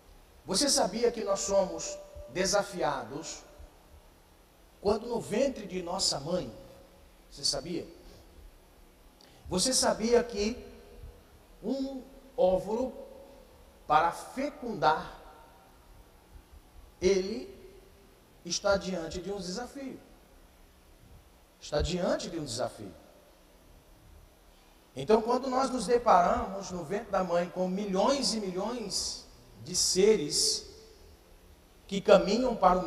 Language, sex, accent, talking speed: Portuguese, male, Brazilian, 95 wpm